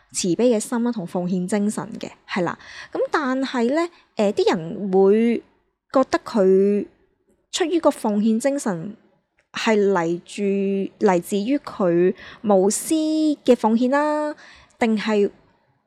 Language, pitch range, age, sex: Chinese, 190-250 Hz, 20-39, female